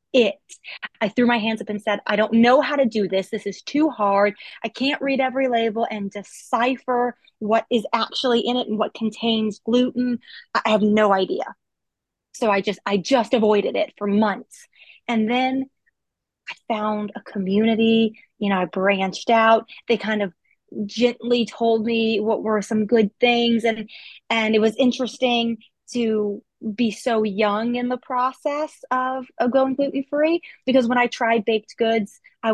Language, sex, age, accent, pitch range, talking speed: English, female, 30-49, American, 215-255 Hz, 175 wpm